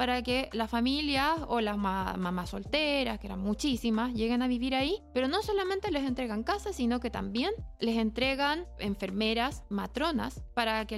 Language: Spanish